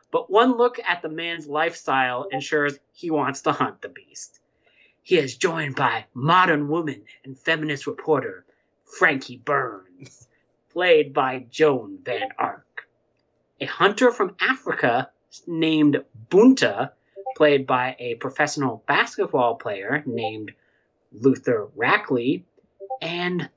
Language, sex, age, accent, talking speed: English, male, 30-49, American, 115 wpm